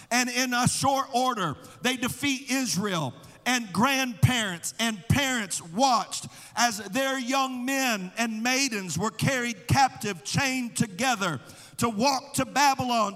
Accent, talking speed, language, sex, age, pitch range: American, 130 wpm, English, male, 50-69, 210-275 Hz